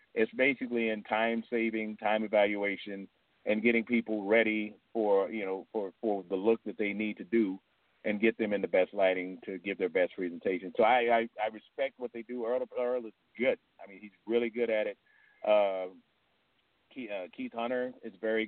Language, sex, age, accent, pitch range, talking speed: English, male, 40-59, American, 100-115 Hz, 195 wpm